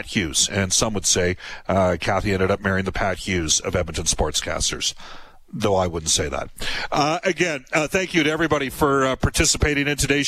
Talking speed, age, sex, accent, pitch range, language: 195 wpm, 40-59, male, American, 125-165 Hz, English